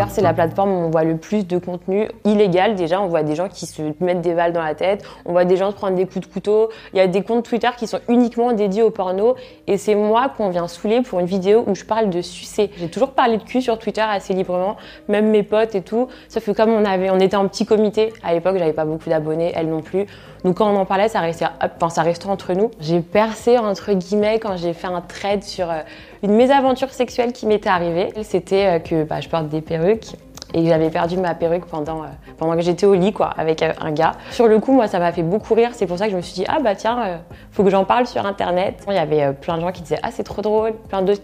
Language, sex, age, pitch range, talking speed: French, female, 20-39, 170-215 Hz, 275 wpm